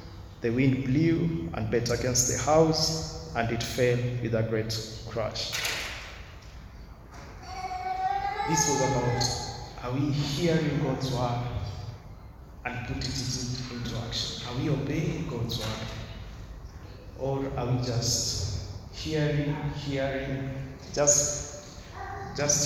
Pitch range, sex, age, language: 115-150 Hz, male, 50-69, English